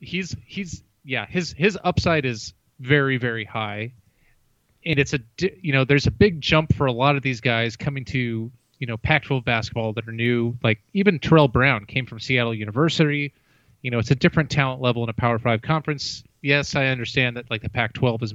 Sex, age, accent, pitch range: male, 30-49, American, 115-145 Hz